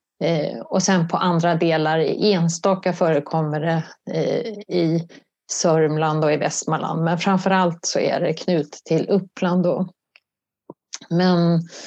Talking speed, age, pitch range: 130 wpm, 30-49, 160-195 Hz